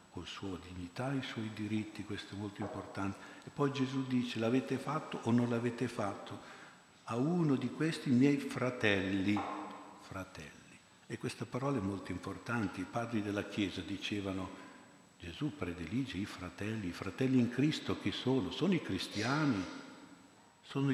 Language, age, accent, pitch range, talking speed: Italian, 60-79, native, 95-125 Hz, 150 wpm